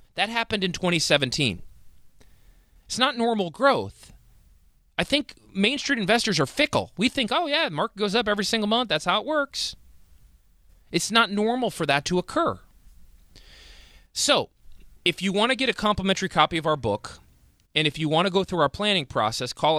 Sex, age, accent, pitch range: male, 30-49, American, 125-195 Hz